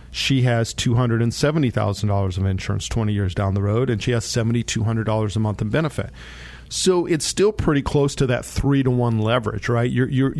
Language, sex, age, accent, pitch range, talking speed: English, male, 40-59, American, 110-135 Hz, 175 wpm